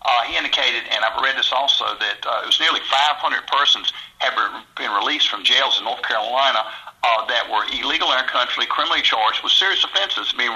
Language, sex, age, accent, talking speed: English, male, 50-69, American, 205 wpm